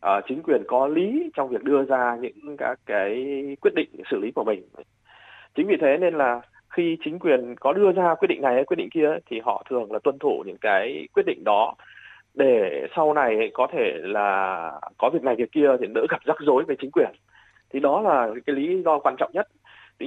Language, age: Vietnamese, 20-39